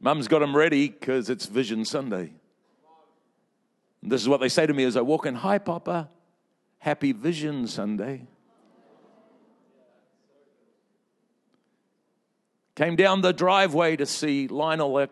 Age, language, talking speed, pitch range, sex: 50-69, English, 130 wpm, 110-155 Hz, male